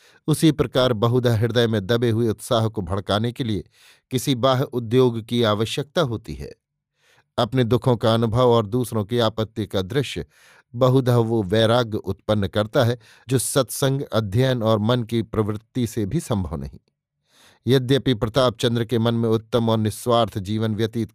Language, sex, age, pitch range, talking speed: Hindi, male, 50-69, 110-130 Hz, 160 wpm